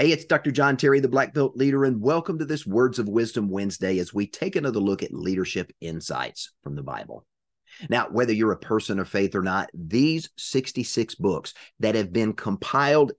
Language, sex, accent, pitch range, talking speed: English, male, American, 95-135 Hz, 200 wpm